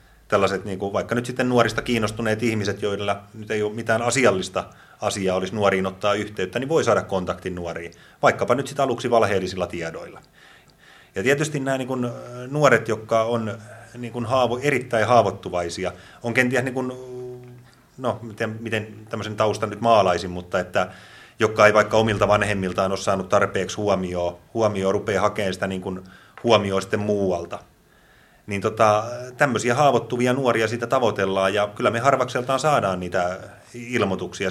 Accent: native